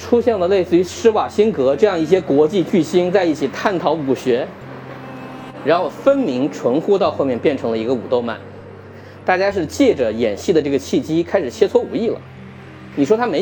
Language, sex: Chinese, male